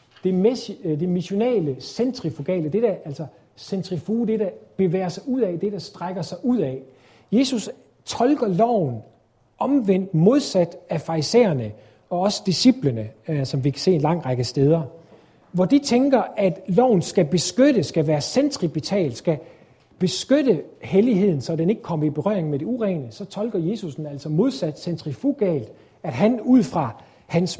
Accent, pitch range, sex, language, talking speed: native, 150-205 Hz, male, Danish, 150 wpm